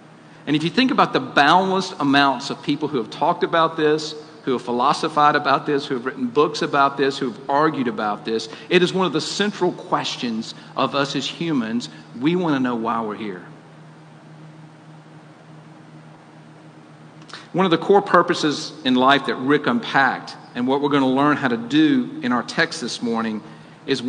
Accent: American